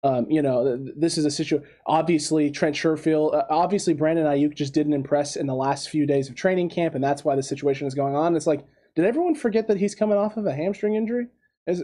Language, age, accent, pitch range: English, 20-39, American, 150-180 Hz